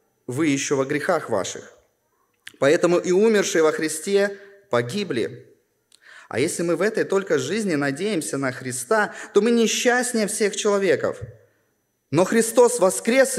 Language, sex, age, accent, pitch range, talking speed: Russian, male, 20-39, native, 145-225 Hz, 130 wpm